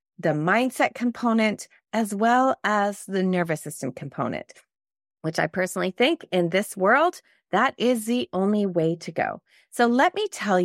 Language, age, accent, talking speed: English, 30-49, American, 160 wpm